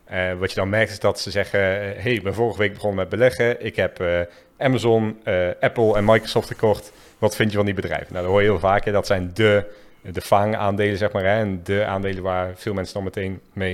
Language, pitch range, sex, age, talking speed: English, 95-110 Hz, male, 40-59, 250 wpm